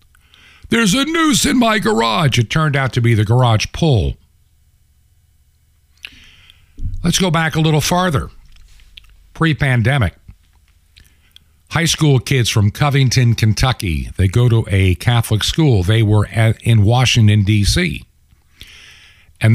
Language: English